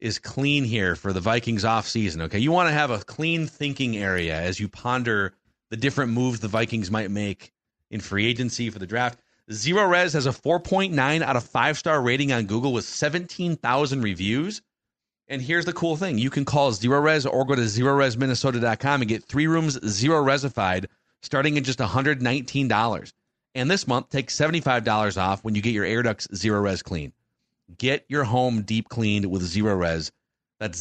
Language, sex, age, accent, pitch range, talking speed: English, male, 30-49, American, 110-140 Hz, 190 wpm